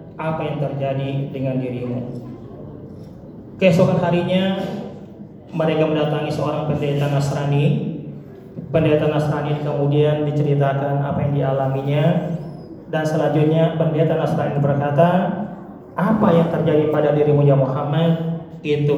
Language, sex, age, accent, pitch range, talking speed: Indonesian, male, 30-49, native, 140-165 Hz, 100 wpm